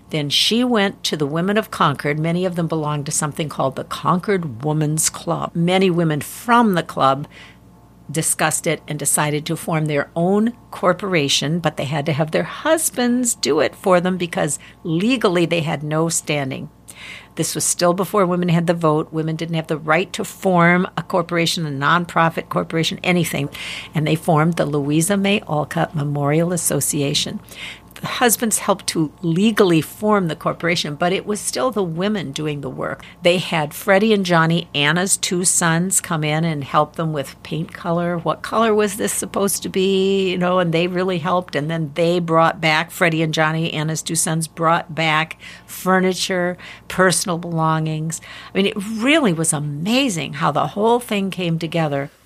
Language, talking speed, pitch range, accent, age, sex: English, 175 wpm, 155-185 Hz, American, 60-79, female